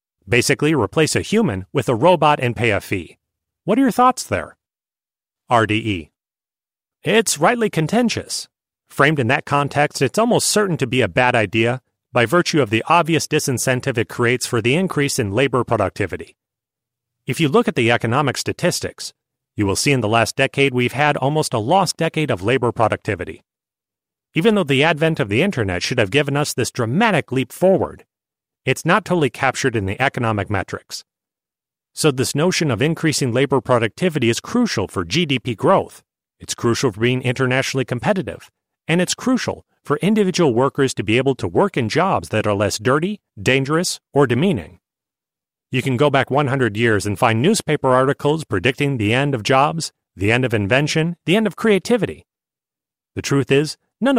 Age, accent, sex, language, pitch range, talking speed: 40-59, American, male, English, 120-160 Hz, 175 wpm